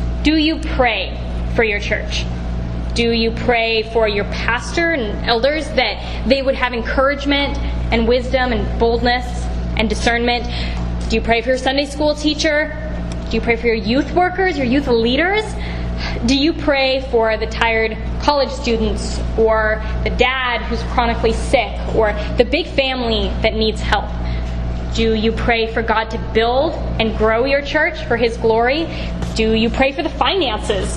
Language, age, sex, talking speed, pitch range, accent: English, 10-29, female, 165 wpm, 210-270 Hz, American